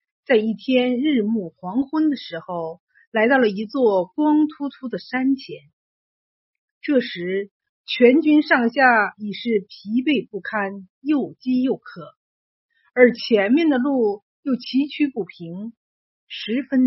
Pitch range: 205-285 Hz